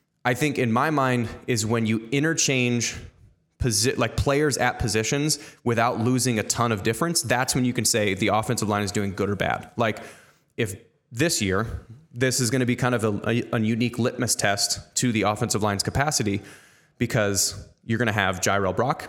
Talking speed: 195 wpm